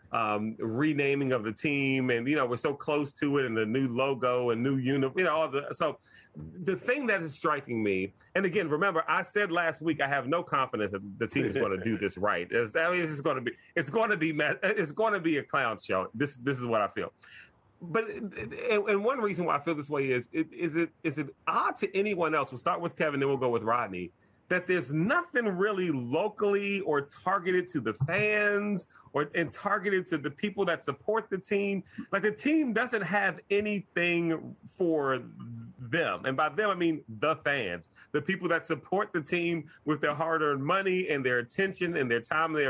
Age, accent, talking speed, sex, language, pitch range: 30-49, American, 220 wpm, male, English, 135-195 Hz